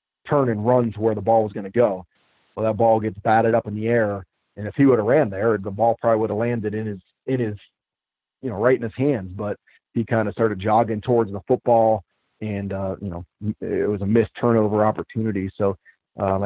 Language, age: English, 40-59